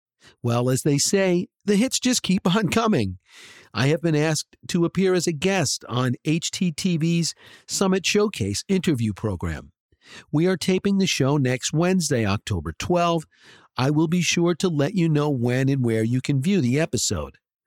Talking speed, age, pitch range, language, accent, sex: 170 wpm, 50-69, 125-185 Hz, English, American, male